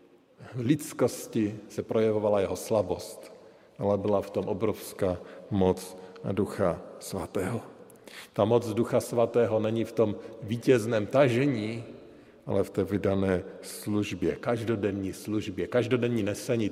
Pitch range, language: 100-120 Hz, Slovak